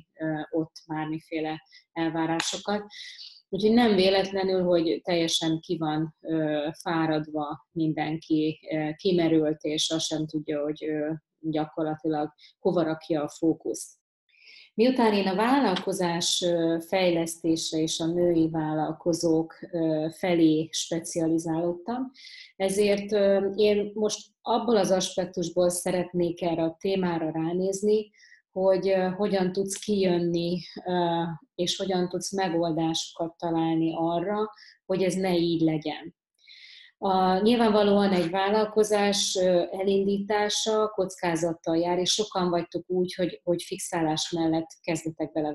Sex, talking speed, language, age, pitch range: female, 105 wpm, Hungarian, 30-49, 160-190 Hz